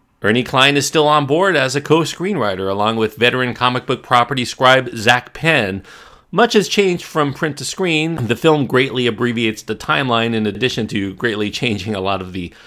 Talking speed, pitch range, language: 190 wpm, 95-125 Hz, English